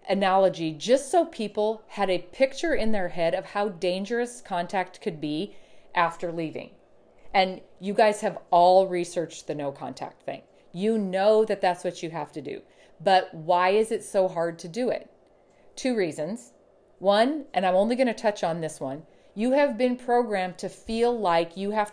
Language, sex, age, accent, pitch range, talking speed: English, female, 40-59, American, 170-220 Hz, 180 wpm